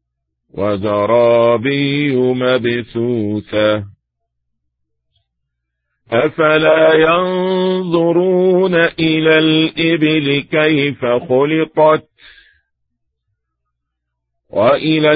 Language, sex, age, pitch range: English, male, 50-69, 110-160 Hz